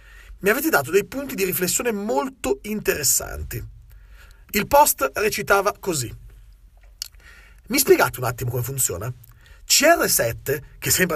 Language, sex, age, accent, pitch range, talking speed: Italian, male, 40-59, native, 135-215 Hz, 120 wpm